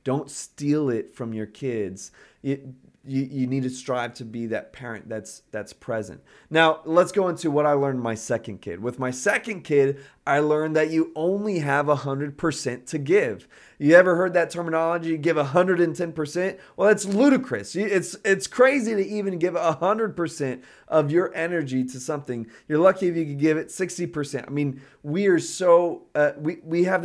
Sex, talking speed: male, 200 wpm